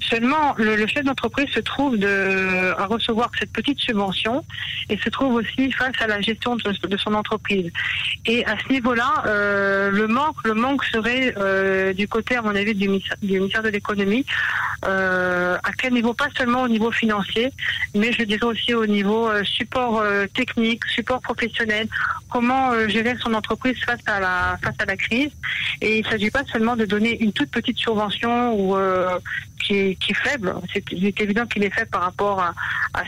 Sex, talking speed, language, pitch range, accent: female, 180 wpm, French, 195-235 Hz, French